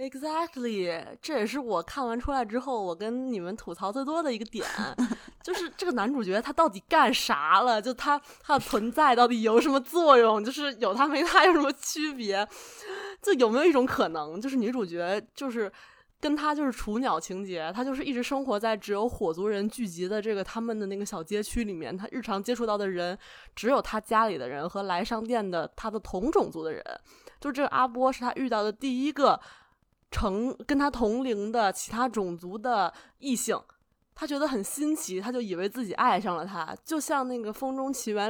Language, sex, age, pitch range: Chinese, female, 20-39, 210-275 Hz